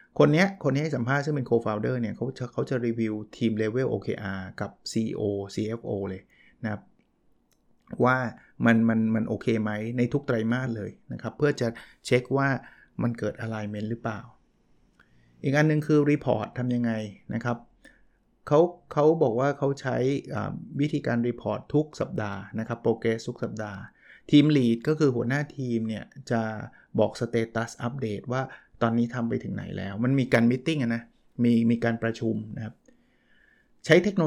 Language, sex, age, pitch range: Thai, male, 20-39, 110-135 Hz